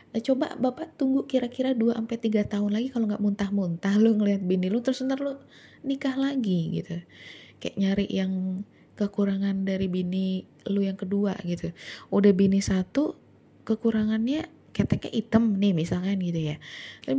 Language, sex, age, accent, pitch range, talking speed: Indonesian, female, 20-39, native, 175-225 Hz, 145 wpm